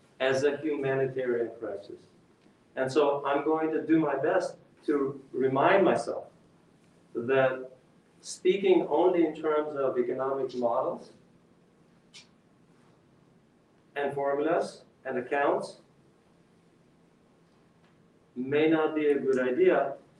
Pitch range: 130-155 Hz